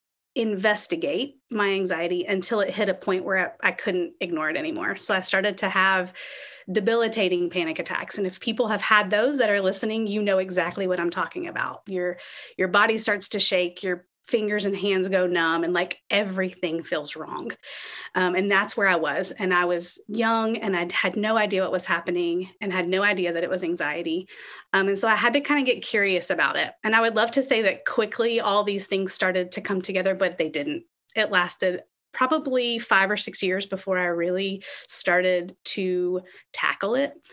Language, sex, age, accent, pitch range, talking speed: English, female, 30-49, American, 180-225 Hz, 205 wpm